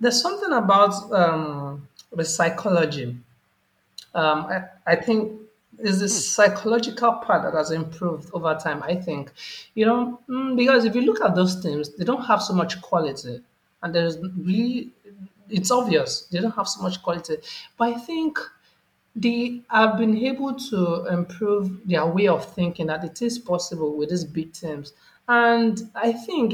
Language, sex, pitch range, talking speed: English, male, 165-225 Hz, 160 wpm